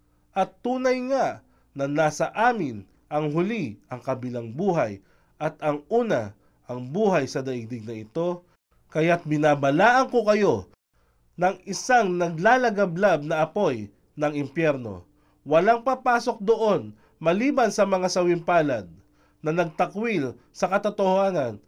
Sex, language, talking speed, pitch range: male, Filipino, 115 wpm, 130-205 Hz